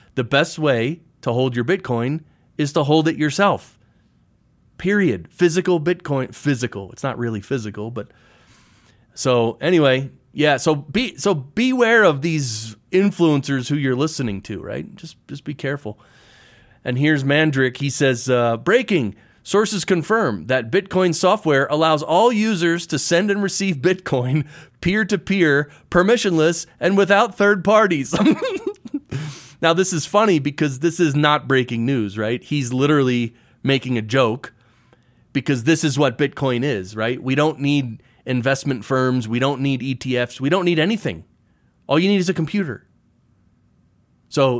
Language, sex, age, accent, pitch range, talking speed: English, male, 30-49, American, 125-165 Hz, 150 wpm